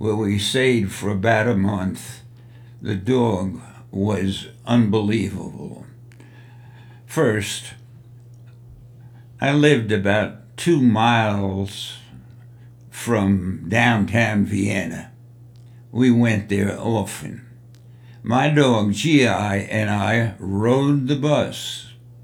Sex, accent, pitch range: male, American, 105-120 Hz